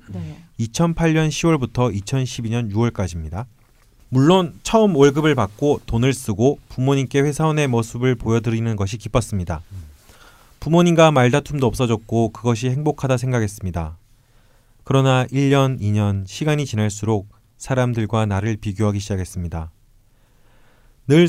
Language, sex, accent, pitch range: Korean, male, native, 105-130 Hz